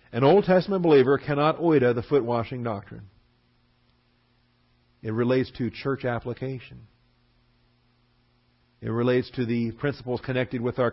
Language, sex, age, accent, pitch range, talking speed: English, male, 50-69, American, 110-130 Hz, 120 wpm